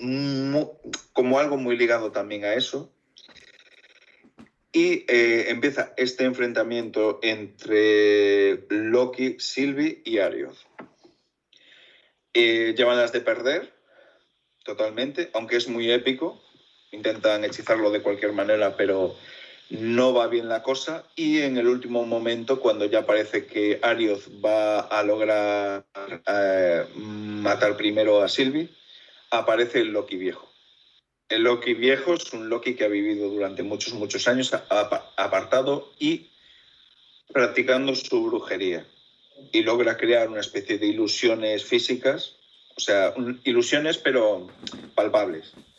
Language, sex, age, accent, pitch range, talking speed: Spanish, male, 30-49, Spanish, 110-145 Hz, 120 wpm